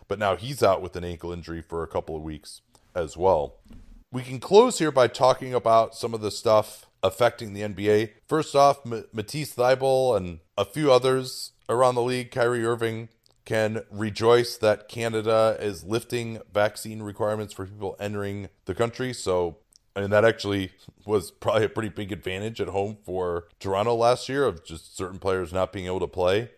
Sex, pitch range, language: male, 90-115 Hz, English